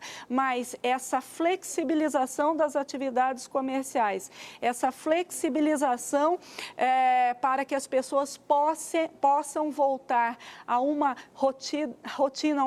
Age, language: 40-59, Portuguese